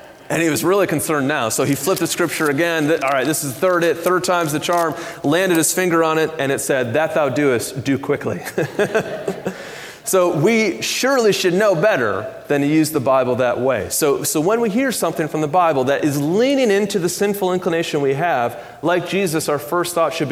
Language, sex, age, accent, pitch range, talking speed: English, male, 30-49, American, 145-195 Hz, 215 wpm